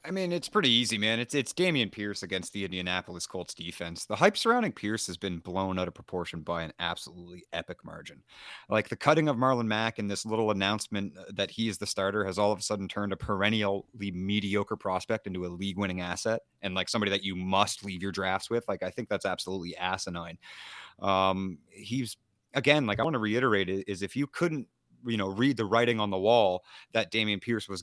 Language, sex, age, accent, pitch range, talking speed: English, male, 30-49, American, 95-110 Hz, 215 wpm